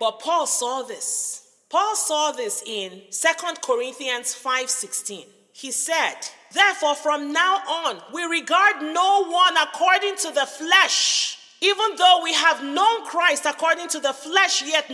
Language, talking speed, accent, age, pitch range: English, 145 wpm, Nigerian, 40-59, 290-390 Hz